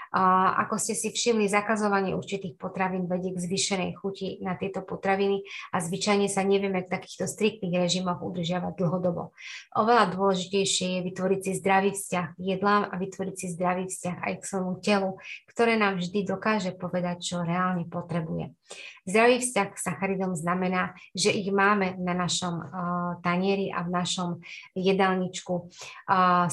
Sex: female